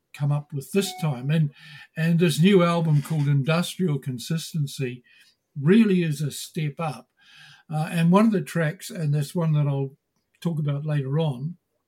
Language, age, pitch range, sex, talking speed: English, 60-79, 145-185 Hz, male, 165 wpm